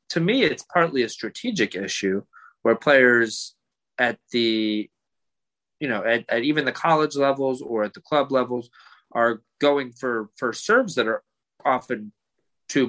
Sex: male